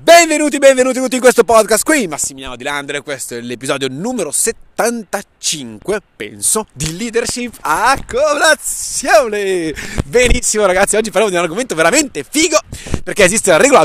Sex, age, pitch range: male, 30-49, 115-170 Hz